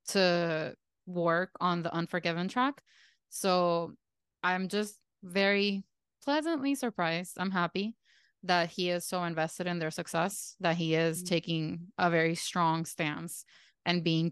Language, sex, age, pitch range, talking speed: English, female, 20-39, 170-195 Hz, 135 wpm